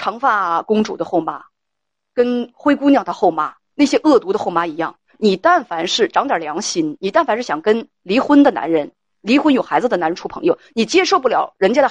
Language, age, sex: Chinese, 30-49, female